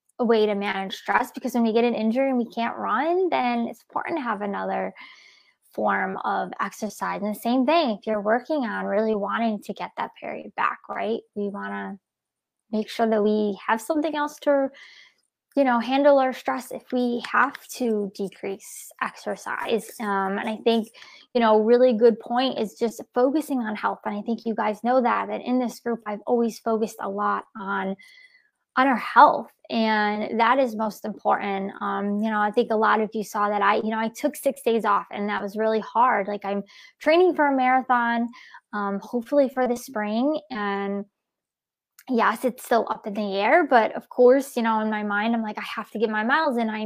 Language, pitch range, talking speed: English, 210-255 Hz, 205 wpm